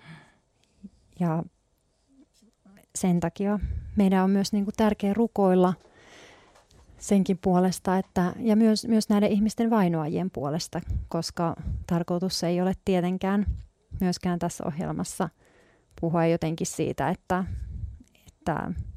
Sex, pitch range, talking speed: female, 160-195 Hz, 100 wpm